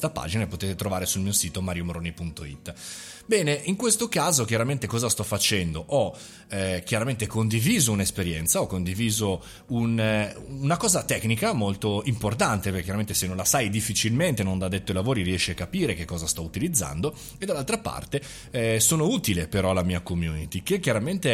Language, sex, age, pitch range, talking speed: Italian, male, 30-49, 100-145 Hz, 170 wpm